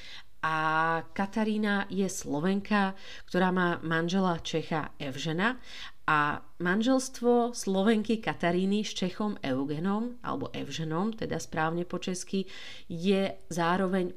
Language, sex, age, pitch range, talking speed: Slovak, female, 40-59, 150-175 Hz, 100 wpm